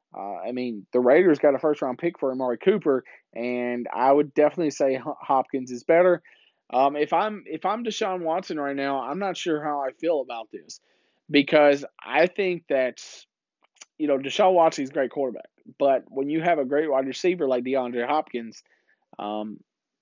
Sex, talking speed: male, 185 wpm